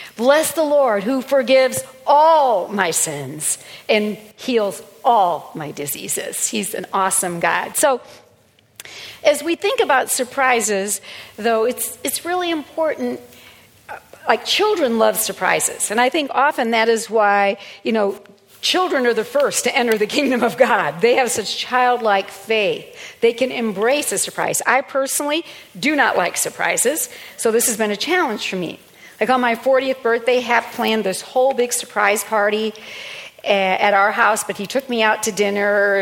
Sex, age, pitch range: female, 50-69, 215-300 Hz